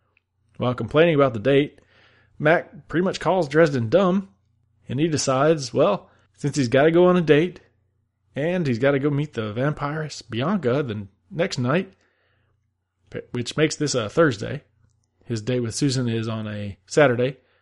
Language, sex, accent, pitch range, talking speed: English, male, American, 105-135 Hz, 165 wpm